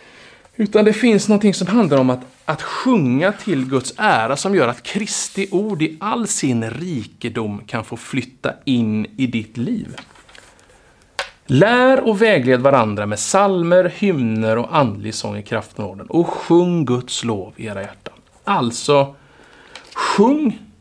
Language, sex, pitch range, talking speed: Swedish, male, 120-180 Hz, 145 wpm